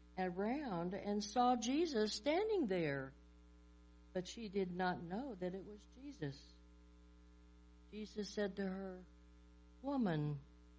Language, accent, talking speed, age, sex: English, American, 110 wpm, 60-79, female